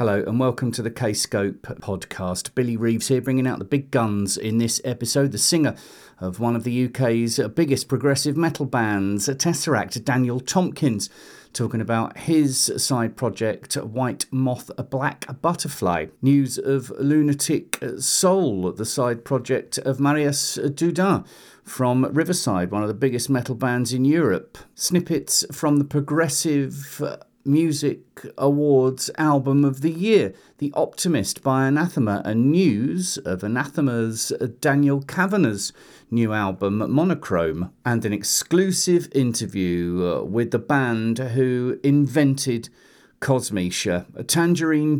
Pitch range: 115-145 Hz